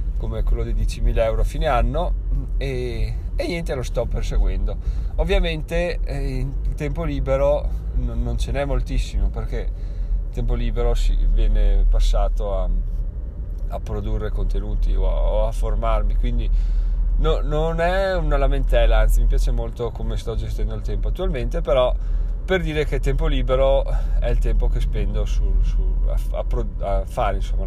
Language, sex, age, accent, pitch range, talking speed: Italian, male, 20-39, native, 100-130 Hz, 165 wpm